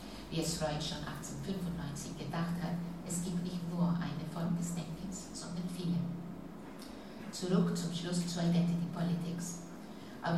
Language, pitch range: German, 165-175 Hz